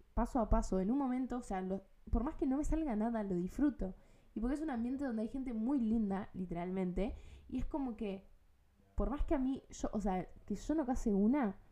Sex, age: female, 10-29